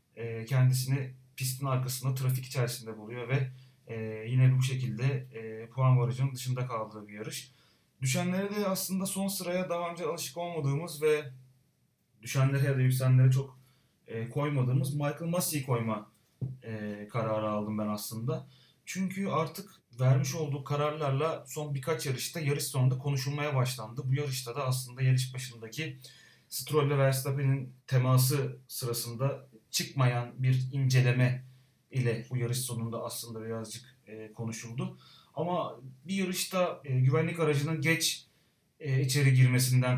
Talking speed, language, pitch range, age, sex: 120 wpm, Turkish, 125-150 Hz, 30-49, male